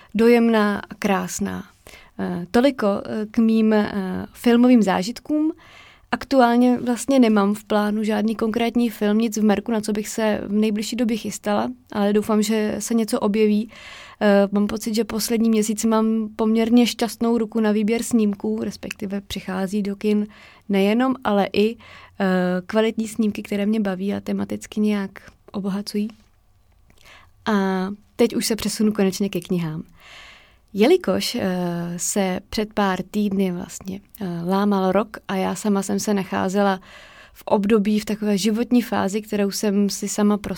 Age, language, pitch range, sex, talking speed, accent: 20-39, Czech, 200-225 Hz, female, 140 wpm, native